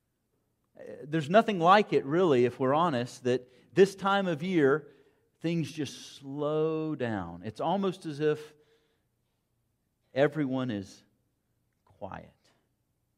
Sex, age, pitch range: male, 50-69, 115-155 Hz